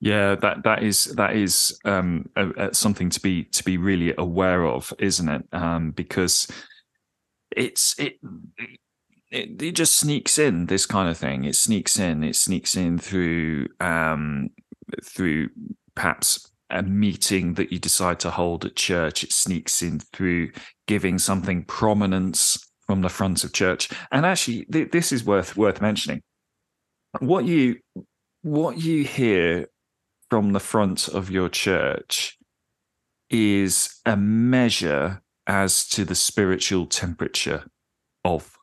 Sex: male